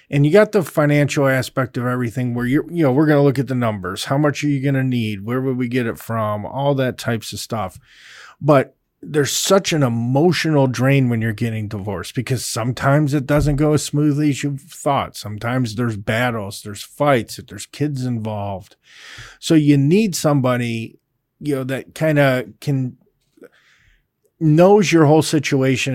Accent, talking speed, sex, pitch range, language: American, 185 wpm, male, 125-155 Hz, English